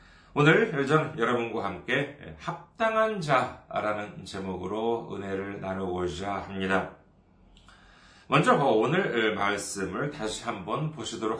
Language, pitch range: Korean, 100-160 Hz